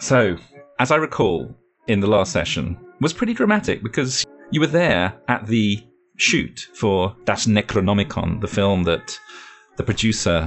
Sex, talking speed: male, 155 wpm